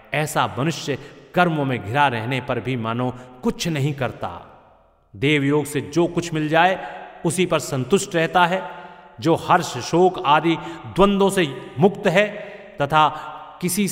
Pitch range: 135-185 Hz